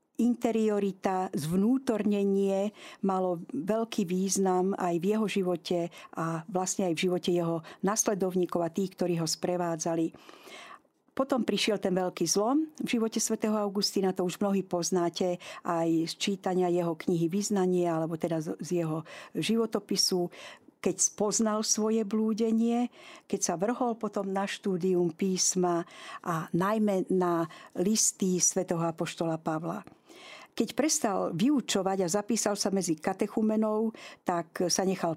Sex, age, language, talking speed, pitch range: female, 50-69, Slovak, 125 wpm, 175-215 Hz